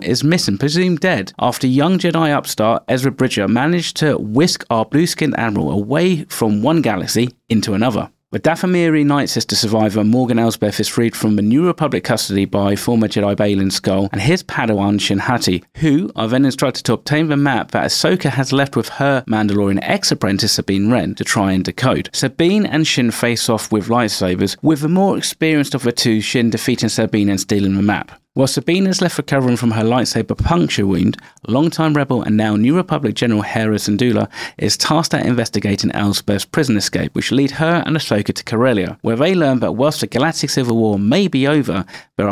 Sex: male